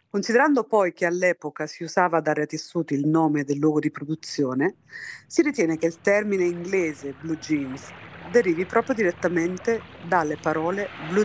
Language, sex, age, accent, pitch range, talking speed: Italian, female, 50-69, native, 150-190 Hz, 155 wpm